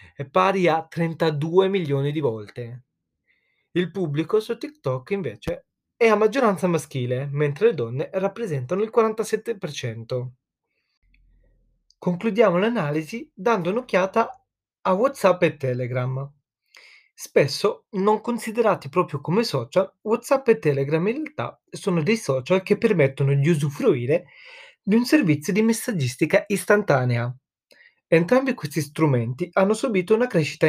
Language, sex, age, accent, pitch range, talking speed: Italian, male, 30-49, native, 140-215 Hz, 120 wpm